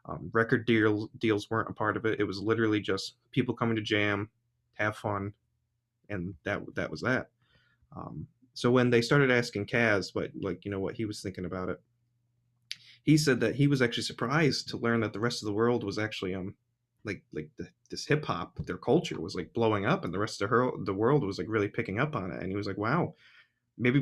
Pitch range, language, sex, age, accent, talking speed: 100-120 Hz, English, male, 20-39, American, 230 wpm